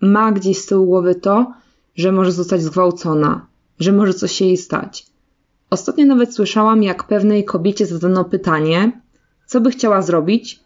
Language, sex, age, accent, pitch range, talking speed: Polish, female, 20-39, native, 180-210 Hz, 160 wpm